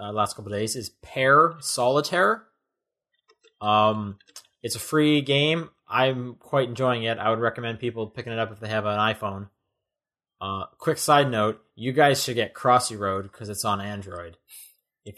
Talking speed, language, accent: 175 wpm, English, American